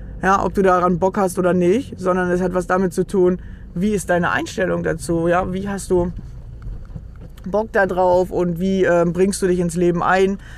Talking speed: 195 wpm